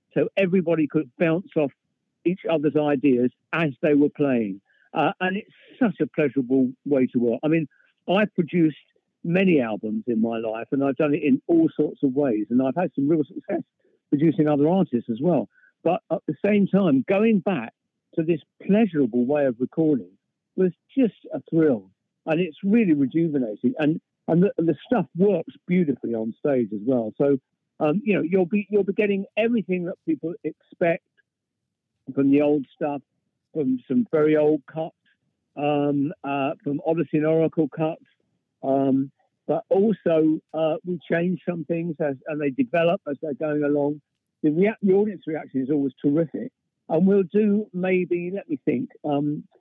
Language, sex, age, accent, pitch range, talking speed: English, male, 50-69, British, 140-185 Hz, 175 wpm